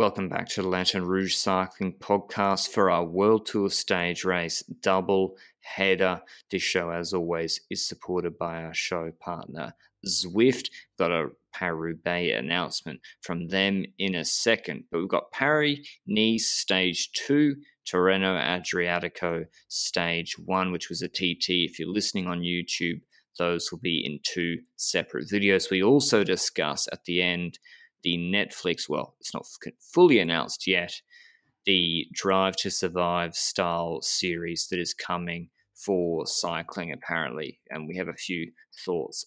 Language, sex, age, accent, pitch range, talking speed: English, male, 20-39, Australian, 85-100 Hz, 145 wpm